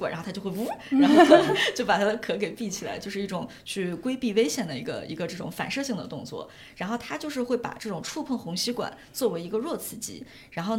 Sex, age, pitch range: female, 20-39, 195-240 Hz